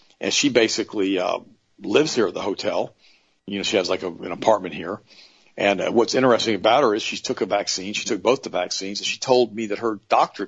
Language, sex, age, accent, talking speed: English, male, 50-69, American, 235 wpm